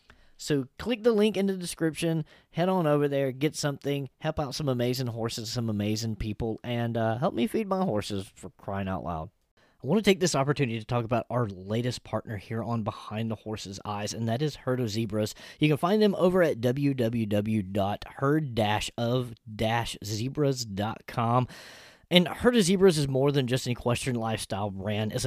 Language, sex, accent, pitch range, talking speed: English, male, American, 110-145 Hz, 180 wpm